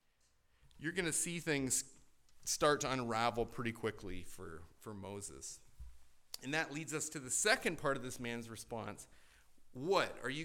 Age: 40-59